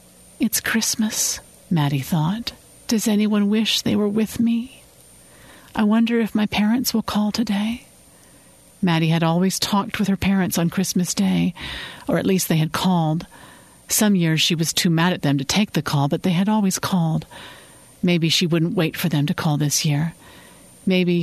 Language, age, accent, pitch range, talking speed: English, 50-69, American, 150-190 Hz, 180 wpm